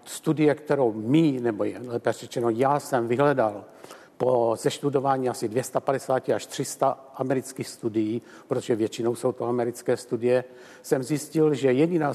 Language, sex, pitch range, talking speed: Czech, male, 120-145 Hz, 135 wpm